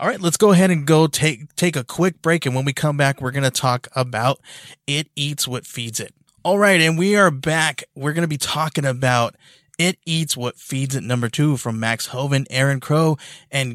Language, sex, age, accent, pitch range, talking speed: English, male, 20-39, American, 115-145 Hz, 225 wpm